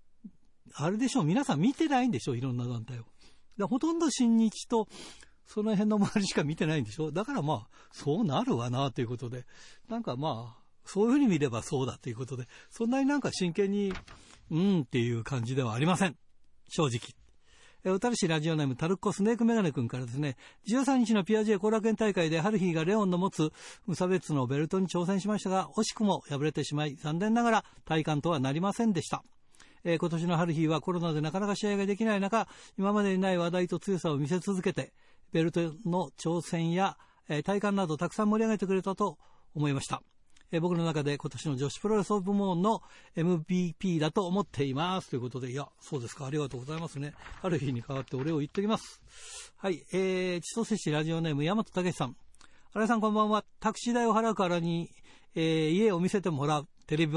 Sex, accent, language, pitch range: male, native, Japanese, 150-205 Hz